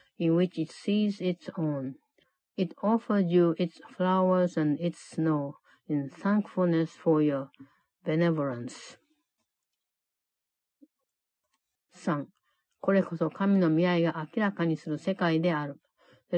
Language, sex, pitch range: Japanese, female, 155-190 Hz